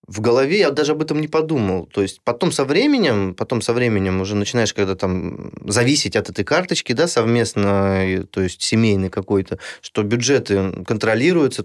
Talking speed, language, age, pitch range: 160 wpm, Russian, 20-39, 100-140 Hz